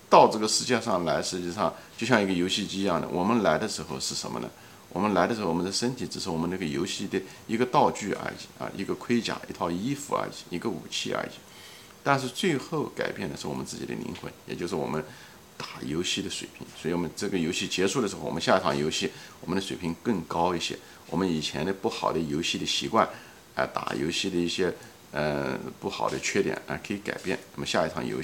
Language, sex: Chinese, male